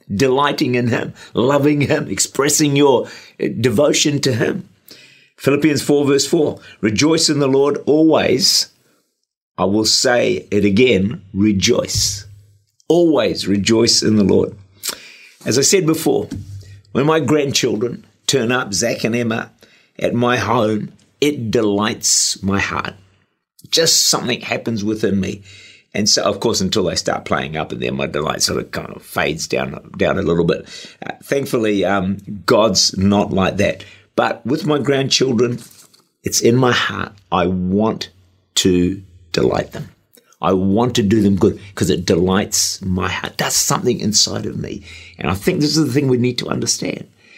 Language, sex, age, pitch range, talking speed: English, male, 50-69, 100-140 Hz, 155 wpm